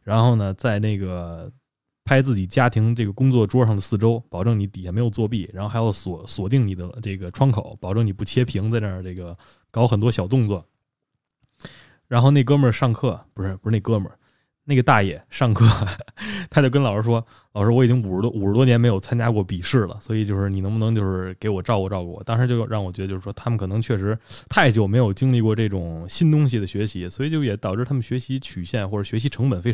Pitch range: 100-130 Hz